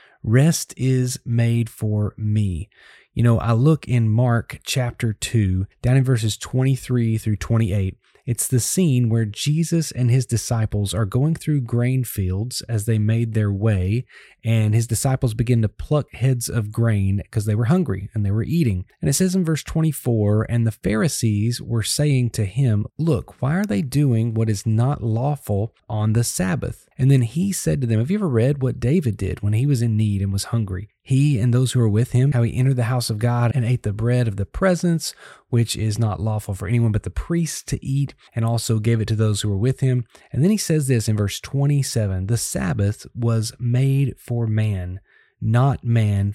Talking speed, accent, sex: 205 wpm, American, male